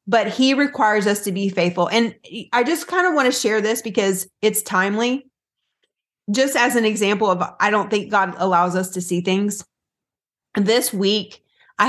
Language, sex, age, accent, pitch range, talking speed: English, female, 30-49, American, 180-215 Hz, 180 wpm